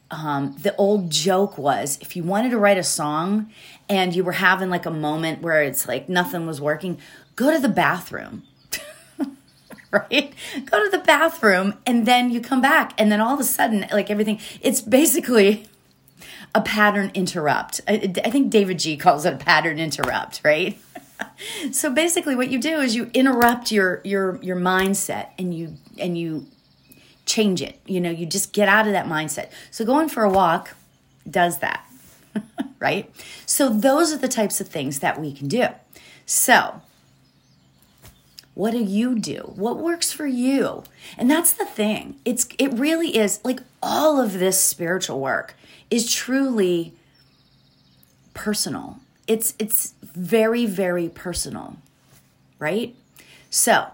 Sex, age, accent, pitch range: female, 30-49, American, 175-250 Hz